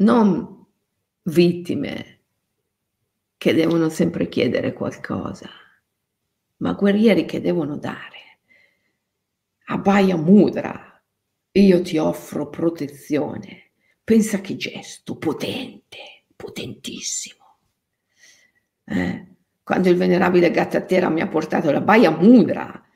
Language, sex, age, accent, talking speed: Italian, female, 50-69, native, 90 wpm